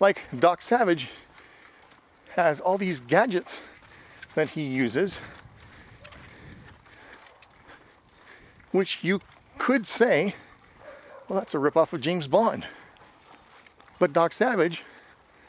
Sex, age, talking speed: male, 40-59, 95 wpm